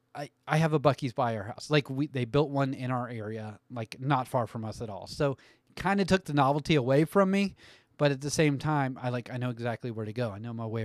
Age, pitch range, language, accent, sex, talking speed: 30-49, 115-150 Hz, English, American, male, 265 wpm